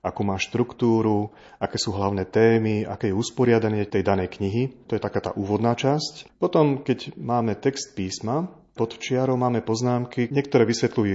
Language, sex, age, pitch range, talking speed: Slovak, male, 30-49, 100-120 Hz, 160 wpm